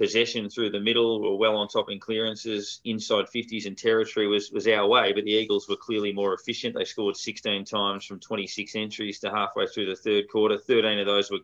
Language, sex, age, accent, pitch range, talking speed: English, male, 20-39, Australian, 100-125 Hz, 225 wpm